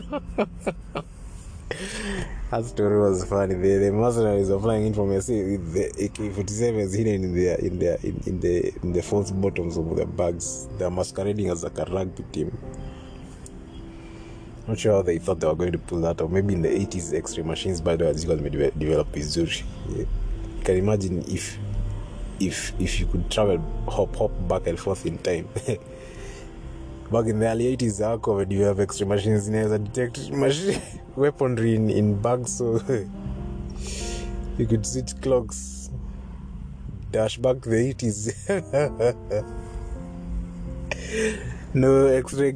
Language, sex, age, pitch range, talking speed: Swahili, male, 20-39, 90-115 Hz, 150 wpm